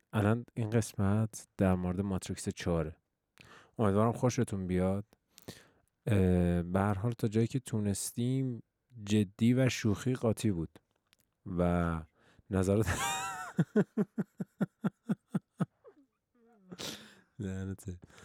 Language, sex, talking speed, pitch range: Persian, male, 70 wpm, 95-115 Hz